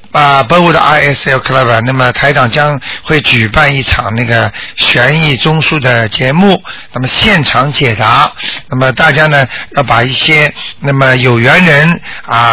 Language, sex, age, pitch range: Chinese, male, 50-69, 125-160 Hz